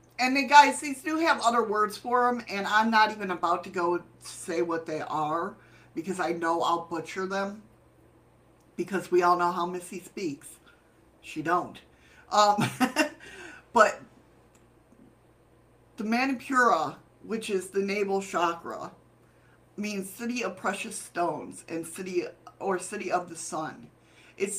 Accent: American